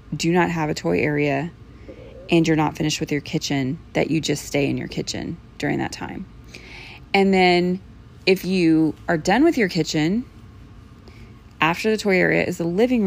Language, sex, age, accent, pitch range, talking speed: English, female, 30-49, American, 145-185 Hz, 180 wpm